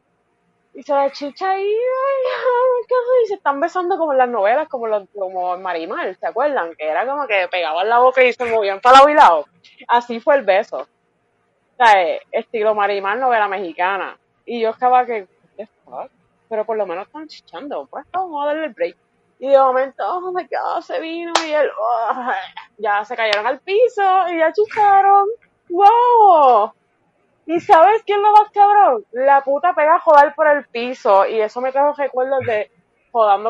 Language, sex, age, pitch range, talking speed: Spanish, female, 20-39, 230-360 Hz, 185 wpm